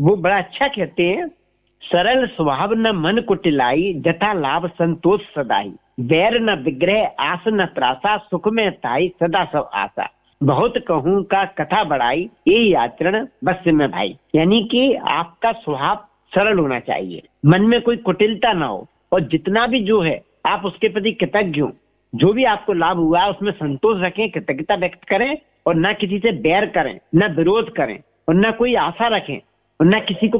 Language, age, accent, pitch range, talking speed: Hindi, 50-69, native, 170-220 Hz, 160 wpm